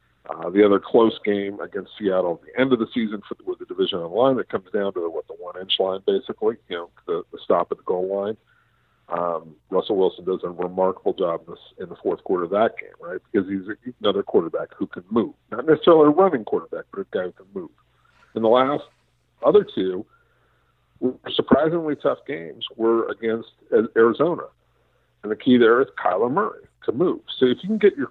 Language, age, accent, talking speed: English, 50-69, American, 205 wpm